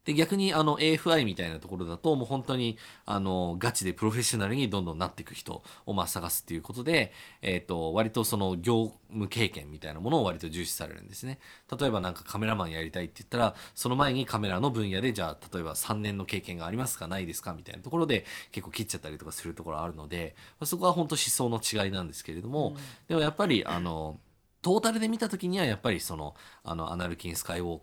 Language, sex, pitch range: Japanese, male, 85-120 Hz